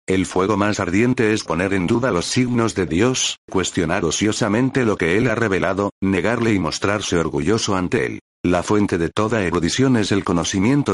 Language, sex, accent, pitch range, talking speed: Spanish, male, Spanish, 95-115 Hz, 180 wpm